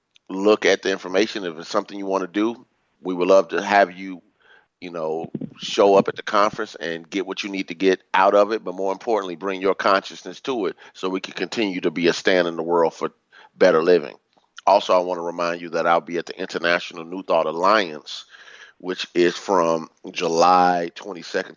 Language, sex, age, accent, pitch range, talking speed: English, male, 30-49, American, 85-100 Hz, 210 wpm